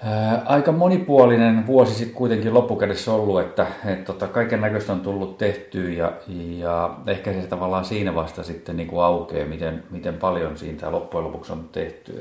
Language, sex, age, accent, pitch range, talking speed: Finnish, male, 40-59, native, 80-100 Hz, 160 wpm